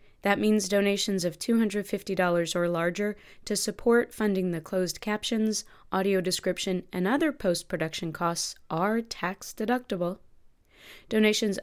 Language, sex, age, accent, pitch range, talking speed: English, female, 20-39, American, 170-215 Hz, 115 wpm